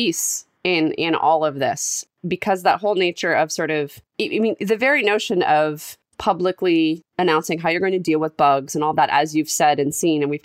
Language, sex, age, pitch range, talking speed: English, female, 20-39, 150-180 Hz, 210 wpm